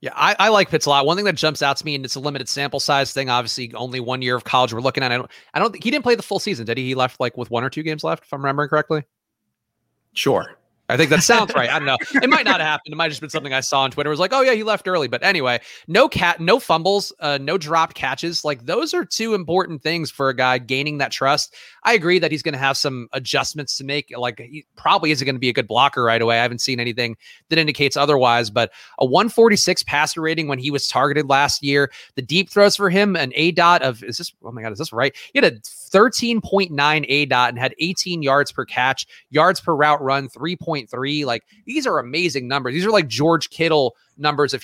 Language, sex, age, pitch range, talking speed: English, male, 30-49, 135-165 Hz, 265 wpm